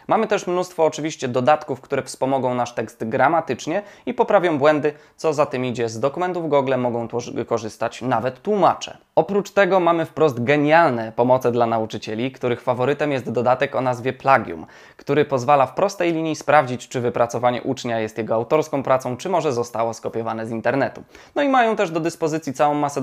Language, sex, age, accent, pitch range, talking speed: Polish, male, 20-39, native, 120-160 Hz, 175 wpm